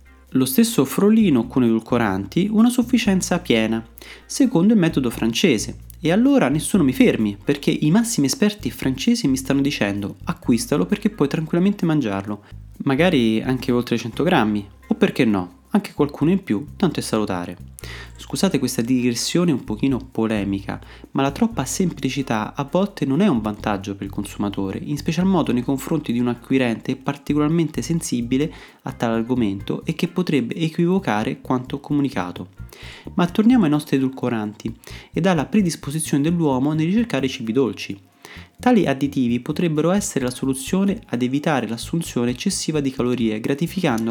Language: Italian